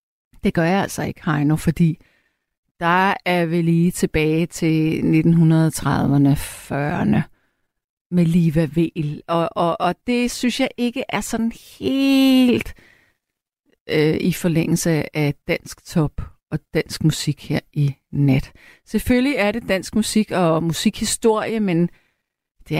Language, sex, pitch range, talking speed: Danish, female, 160-210 Hz, 130 wpm